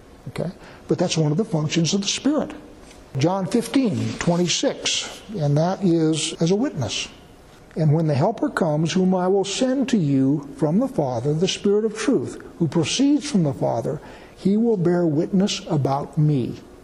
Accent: American